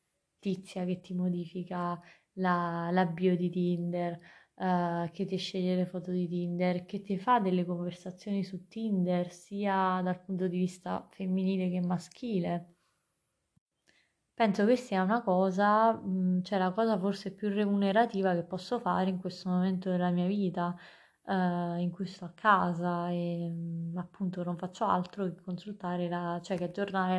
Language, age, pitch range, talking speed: Italian, 20-39, 175-195 Hz, 140 wpm